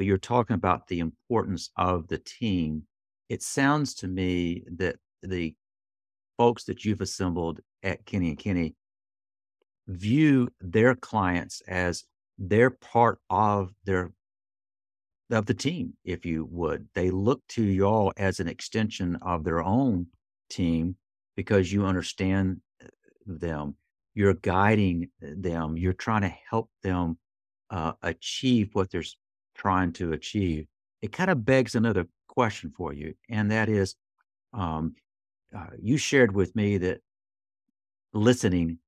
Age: 50-69